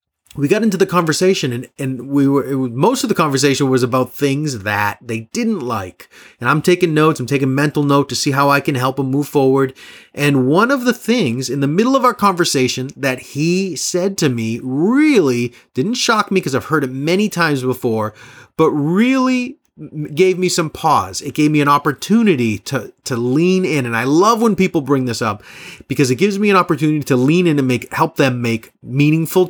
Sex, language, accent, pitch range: male, English, American, 130-180 Hz